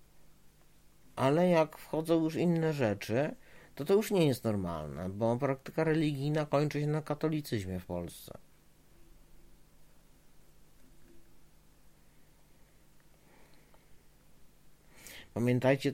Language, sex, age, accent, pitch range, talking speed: Polish, male, 50-69, native, 90-115 Hz, 85 wpm